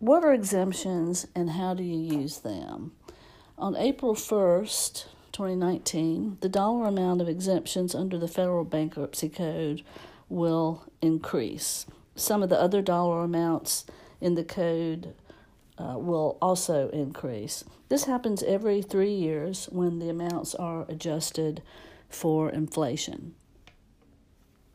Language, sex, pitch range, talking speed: English, female, 160-190 Hz, 120 wpm